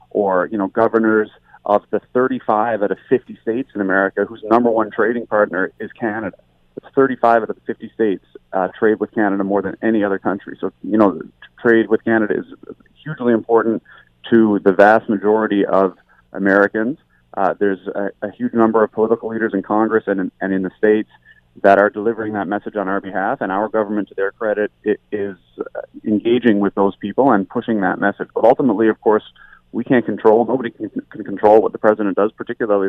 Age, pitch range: 30-49, 95-110 Hz